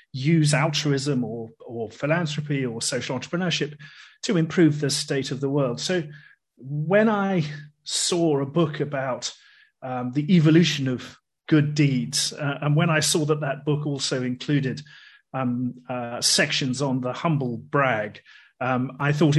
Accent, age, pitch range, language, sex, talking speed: British, 40-59, 130-155 Hz, English, male, 150 wpm